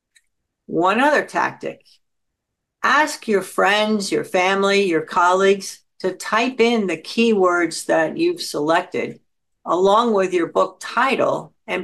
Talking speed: 120 wpm